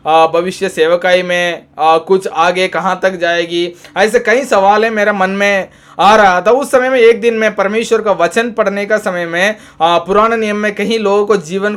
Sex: male